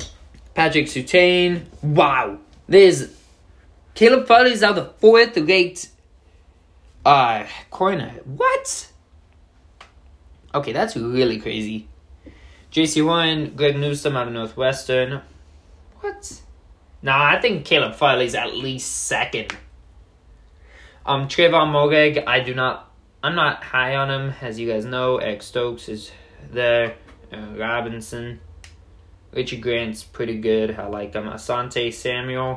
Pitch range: 80-135 Hz